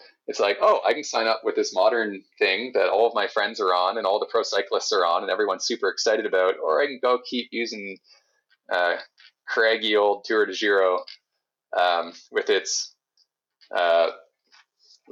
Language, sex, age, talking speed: English, male, 30-49, 185 wpm